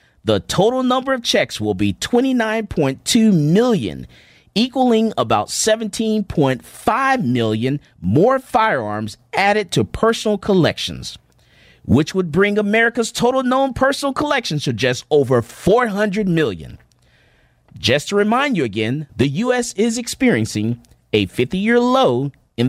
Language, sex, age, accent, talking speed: English, male, 40-59, American, 125 wpm